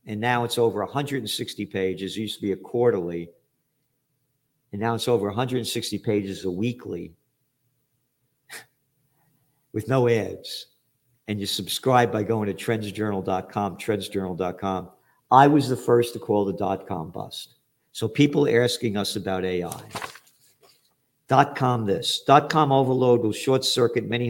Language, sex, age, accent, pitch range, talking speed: English, male, 50-69, American, 100-125 Hz, 135 wpm